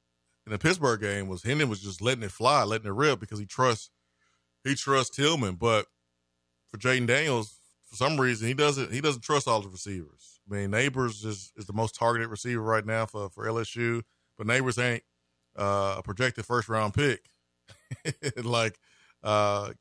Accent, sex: American, male